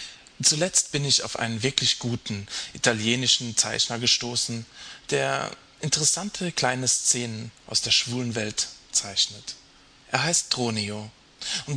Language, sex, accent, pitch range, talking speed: German, male, German, 110-140 Hz, 115 wpm